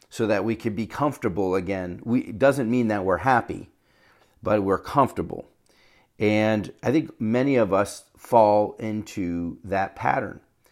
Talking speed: 150 wpm